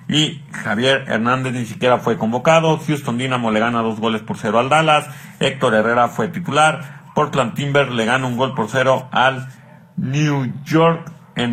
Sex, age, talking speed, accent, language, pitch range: male, 40-59, 170 wpm, Mexican, Spanish, 115-145 Hz